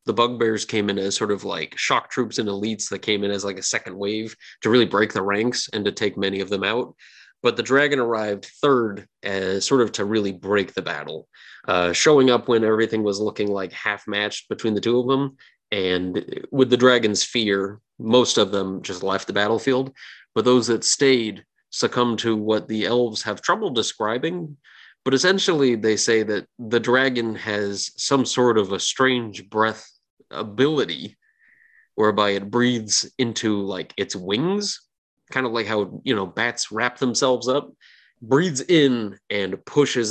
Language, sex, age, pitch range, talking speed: English, male, 30-49, 100-125 Hz, 180 wpm